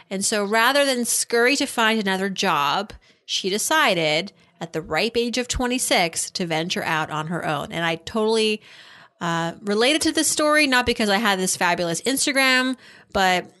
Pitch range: 180-235 Hz